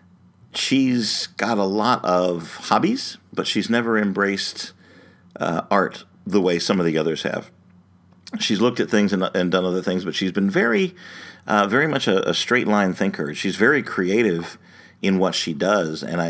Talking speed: 175 wpm